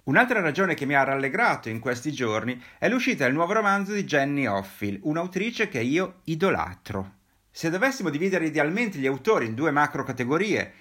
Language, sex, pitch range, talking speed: Italian, male, 115-175 Hz, 165 wpm